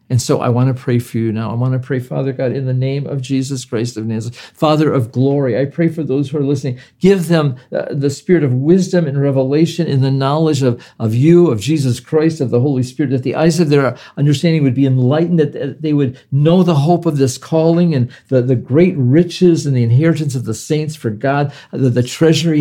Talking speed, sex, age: 235 wpm, male, 50-69